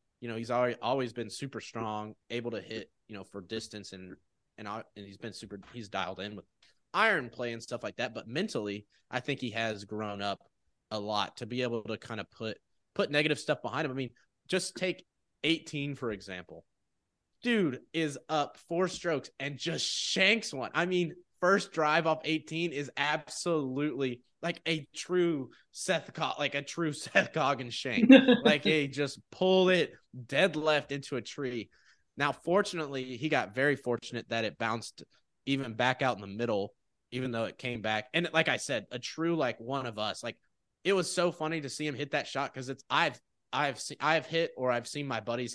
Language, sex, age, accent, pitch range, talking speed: English, male, 20-39, American, 115-155 Hz, 200 wpm